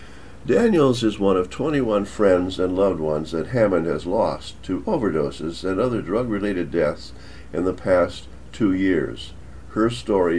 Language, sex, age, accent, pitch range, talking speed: English, male, 60-79, American, 80-105 Hz, 150 wpm